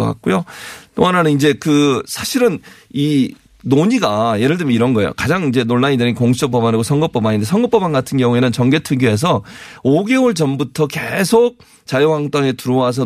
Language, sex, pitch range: Korean, male, 120-160 Hz